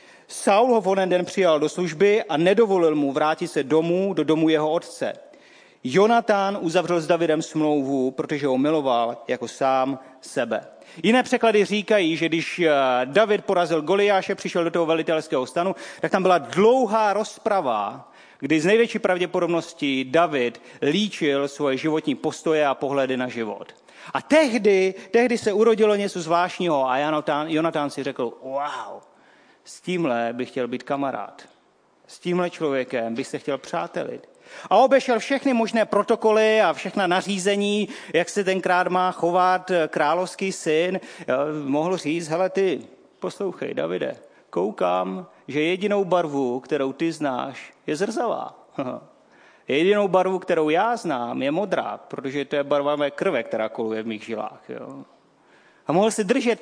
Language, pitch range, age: Czech, 145-200 Hz, 40-59